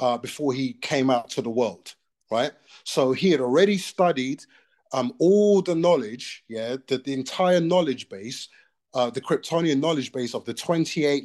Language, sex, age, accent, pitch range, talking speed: English, male, 30-49, British, 125-175 Hz, 170 wpm